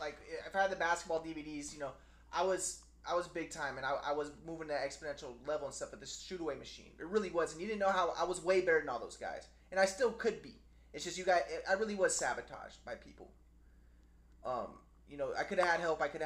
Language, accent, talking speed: English, American, 260 wpm